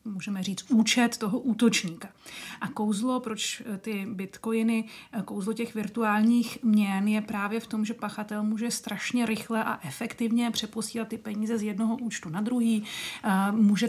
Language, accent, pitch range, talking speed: Czech, native, 200-235 Hz, 145 wpm